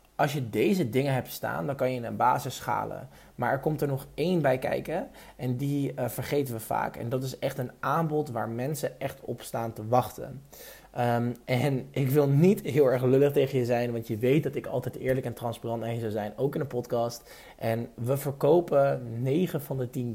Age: 20-39